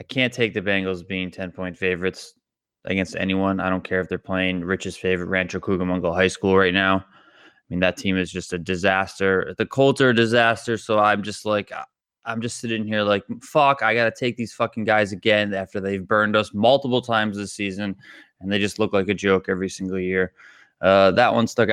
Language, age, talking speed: English, 20-39, 215 wpm